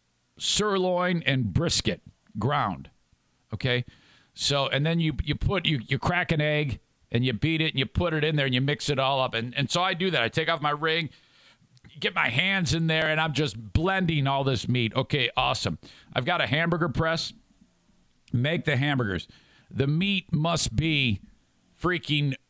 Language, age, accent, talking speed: English, 50-69, American, 185 wpm